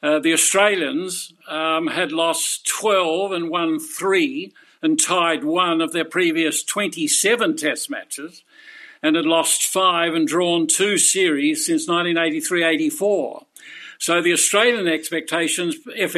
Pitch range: 160-255 Hz